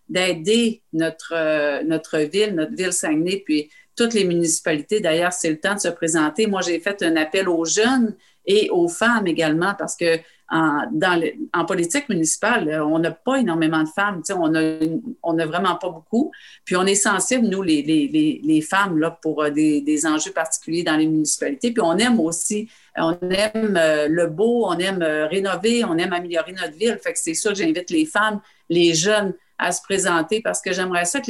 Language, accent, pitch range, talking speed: French, Canadian, 160-205 Hz, 190 wpm